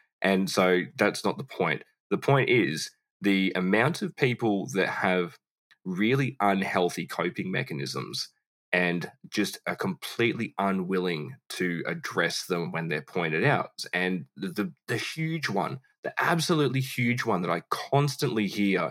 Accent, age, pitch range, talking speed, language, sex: Australian, 10-29, 90-115 Hz, 145 wpm, English, male